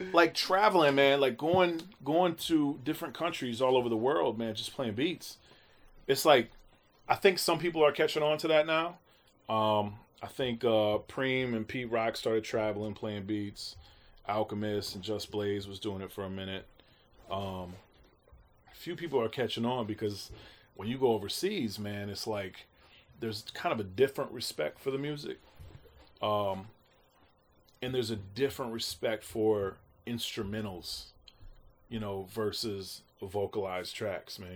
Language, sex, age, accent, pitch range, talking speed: English, male, 30-49, American, 105-130 Hz, 155 wpm